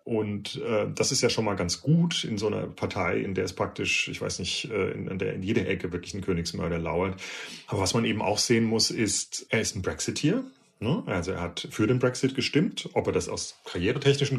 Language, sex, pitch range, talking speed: German, male, 90-115 Hz, 225 wpm